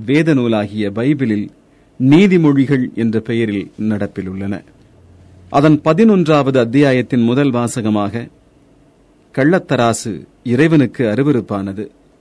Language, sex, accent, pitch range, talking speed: Tamil, male, native, 115-150 Hz, 75 wpm